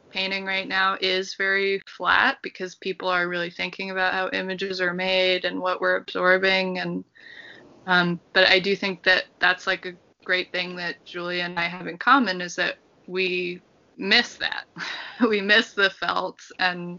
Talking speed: 175 wpm